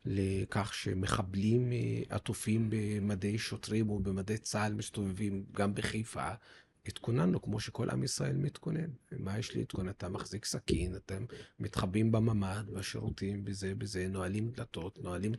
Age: 40-59